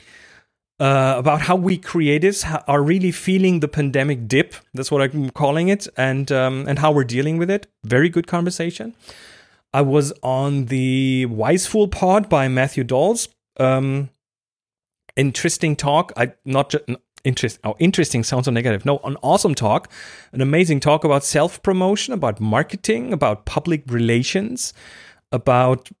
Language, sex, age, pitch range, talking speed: English, male, 30-49, 125-175 Hz, 150 wpm